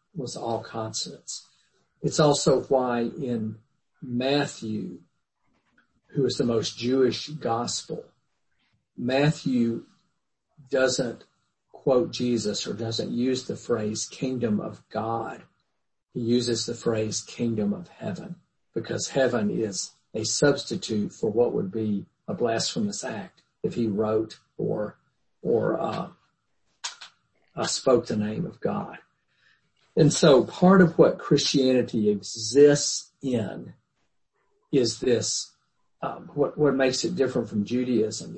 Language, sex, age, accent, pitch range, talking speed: English, male, 50-69, American, 110-145 Hz, 115 wpm